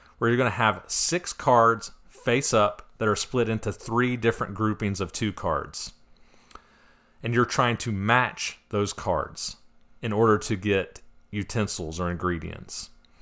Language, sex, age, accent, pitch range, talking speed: English, male, 40-59, American, 100-120 Hz, 145 wpm